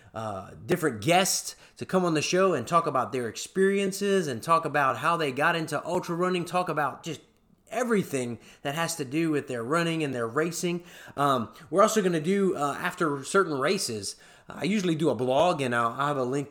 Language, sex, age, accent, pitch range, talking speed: English, male, 30-49, American, 130-165 Hz, 205 wpm